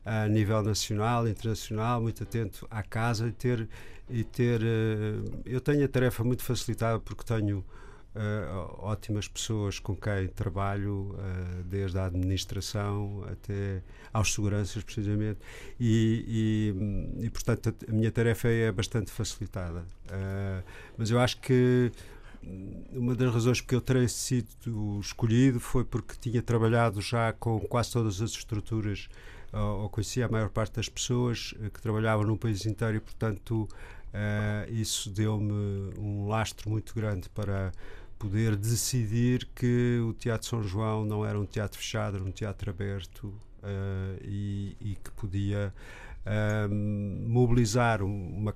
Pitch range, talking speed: 100-115 Hz, 140 wpm